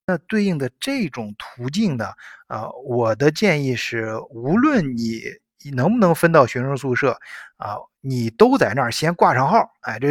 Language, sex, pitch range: Chinese, male, 115-155 Hz